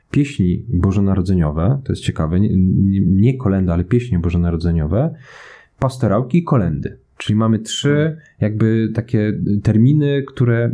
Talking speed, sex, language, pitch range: 110 wpm, male, Polish, 100-125 Hz